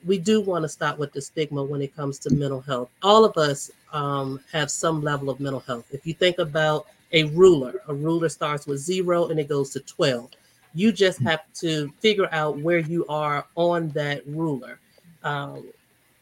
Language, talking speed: English, 190 wpm